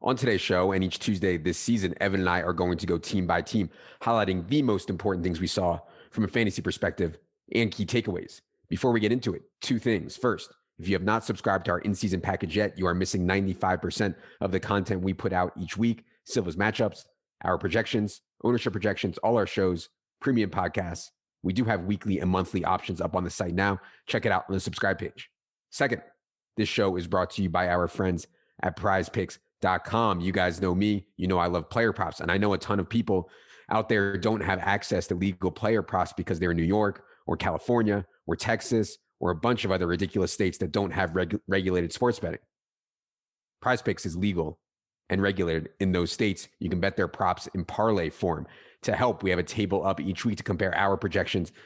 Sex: male